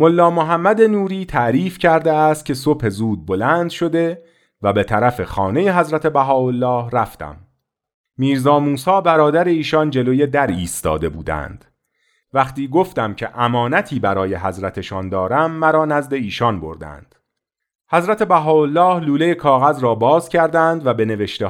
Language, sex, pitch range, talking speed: Persian, male, 95-155 Hz, 130 wpm